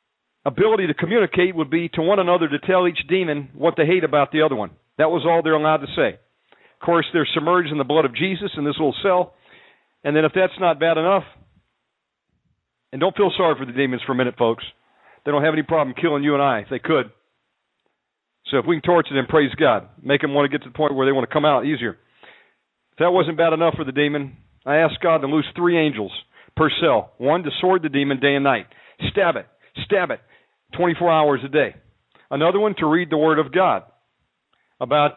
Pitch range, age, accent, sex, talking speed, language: 145-180 Hz, 50-69, American, male, 230 wpm, English